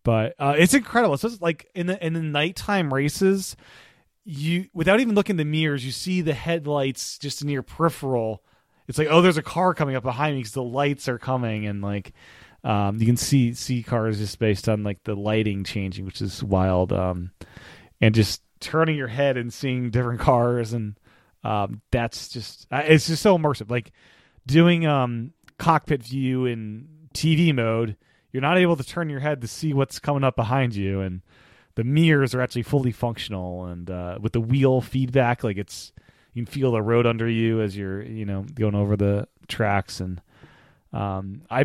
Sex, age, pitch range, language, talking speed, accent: male, 30-49, 105-145 Hz, English, 190 wpm, American